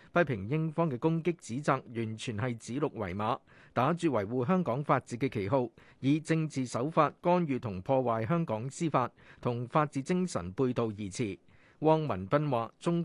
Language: Chinese